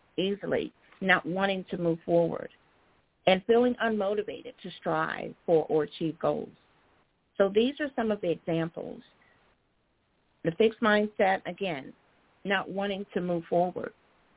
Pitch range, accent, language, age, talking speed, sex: 175-215 Hz, American, English, 50-69, 130 wpm, female